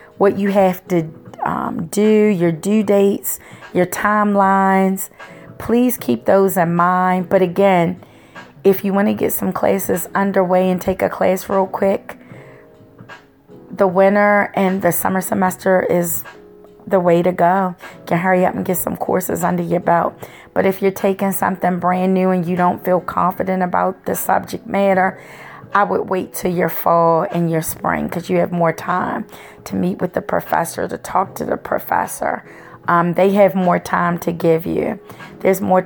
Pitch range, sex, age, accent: 170-190 Hz, female, 30-49, American